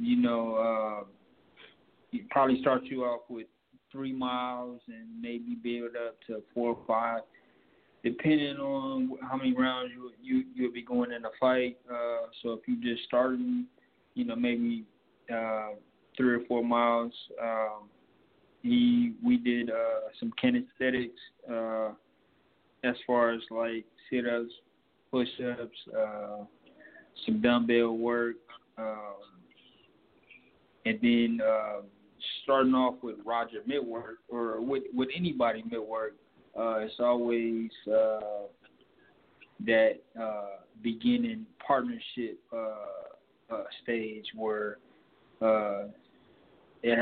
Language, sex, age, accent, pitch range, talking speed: English, male, 20-39, American, 115-135 Hz, 120 wpm